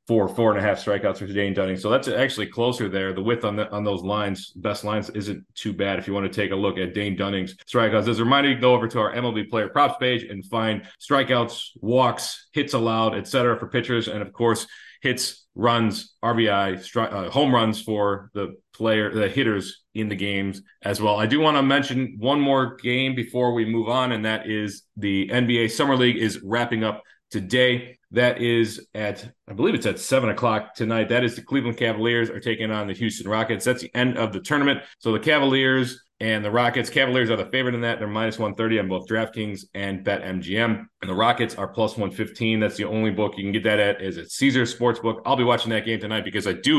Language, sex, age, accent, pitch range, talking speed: English, male, 30-49, American, 105-120 Hz, 230 wpm